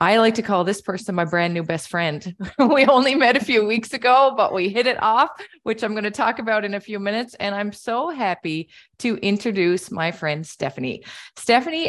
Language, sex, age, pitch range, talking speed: English, female, 20-39, 155-200 Hz, 215 wpm